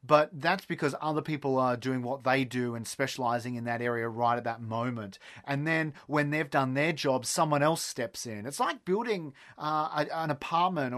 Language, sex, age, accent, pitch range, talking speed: English, male, 30-49, Australian, 125-155 Hz, 195 wpm